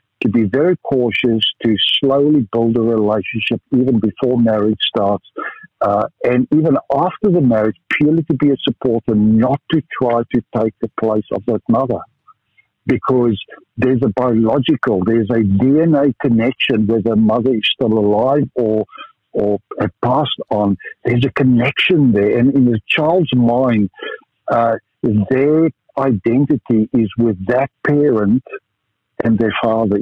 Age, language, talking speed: 60-79, English, 140 wpm